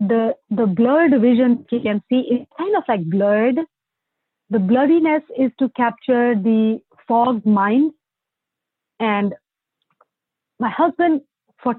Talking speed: 120 wpm